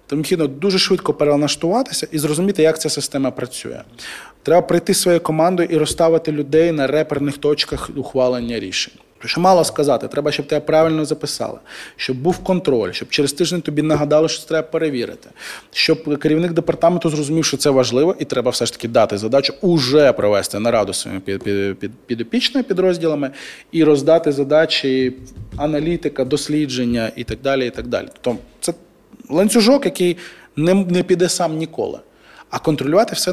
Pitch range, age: 130-175 Hz, 20-39